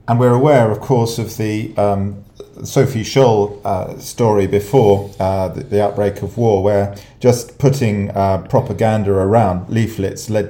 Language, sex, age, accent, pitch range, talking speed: English, male, 40-59, British, 100-115 Hz, 155 wpm